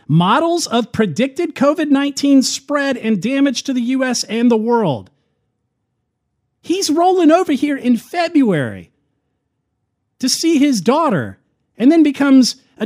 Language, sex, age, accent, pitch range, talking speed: English, male, 40-59, American, 155-240 Hz, 125 wpm